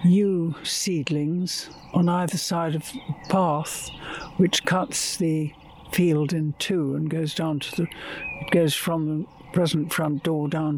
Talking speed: 145 wpm